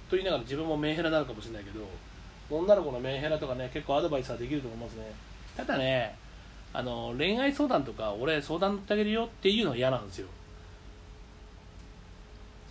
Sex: male